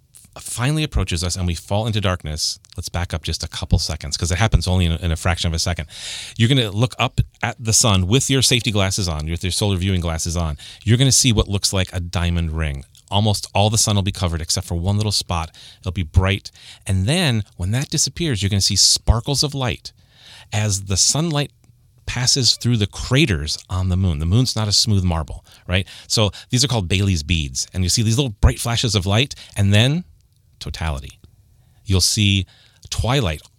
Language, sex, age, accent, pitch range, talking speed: English, male, 30-49, American, 90-115 Hz, 215 wpm